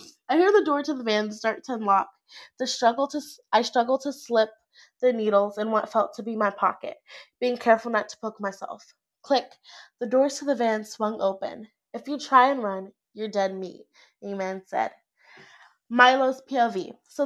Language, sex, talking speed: English, female, 175 wpm